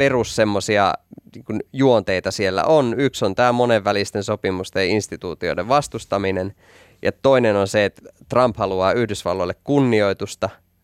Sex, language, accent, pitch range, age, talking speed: male, Finnish, native, 95-115 Hz, 20-39, 115 wpm